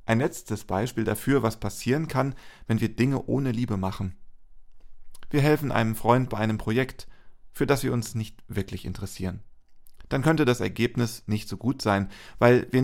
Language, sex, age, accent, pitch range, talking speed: German, male, 40-59, German, 100-130 Hz, 175 wpm